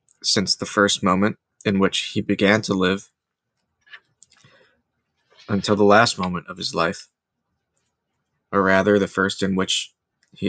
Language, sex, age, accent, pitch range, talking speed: English, male, 20-39, American, 95-105 Hz, 135 wpm